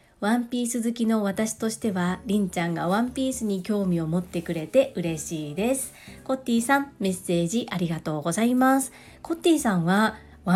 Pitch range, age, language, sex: 170-230 Hz, 40-59, Japanese, female